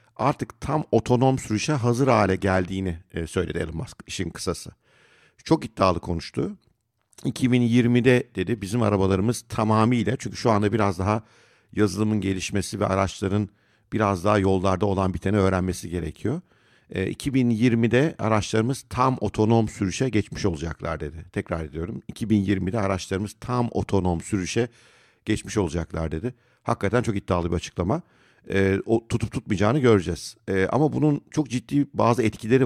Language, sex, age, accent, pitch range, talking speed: Turkish, male, 50-69, native, 95-125 Hz, 130 wpm